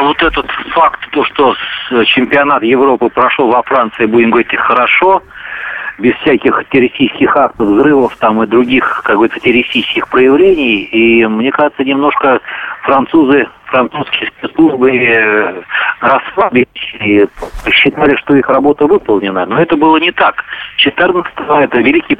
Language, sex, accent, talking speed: Russian, male, native, 130 wpm